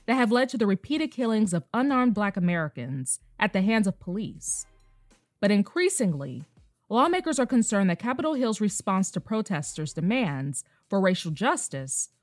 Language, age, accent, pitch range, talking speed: English, 20-39, American, 165-250 Hz, 150 wpm